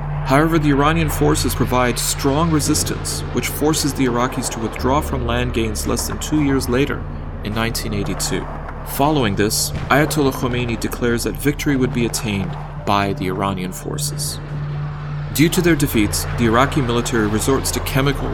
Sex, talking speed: male, 155 wpm